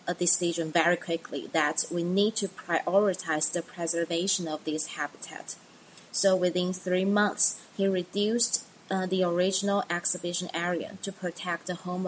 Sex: female